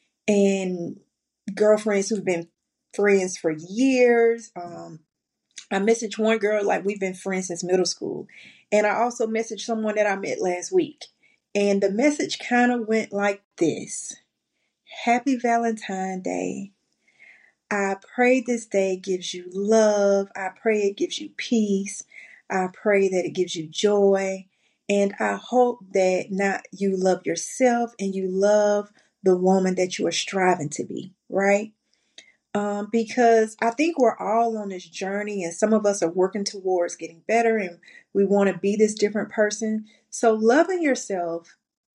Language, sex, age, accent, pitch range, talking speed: English, female, 30-49, American, 185-230 Hz, 155 wpm